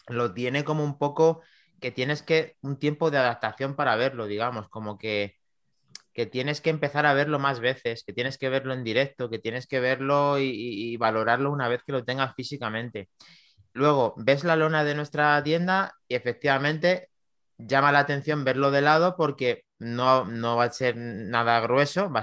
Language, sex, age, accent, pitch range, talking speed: Spanish, male, 30-49, Spanish, 115-150 Hz, 185 wpm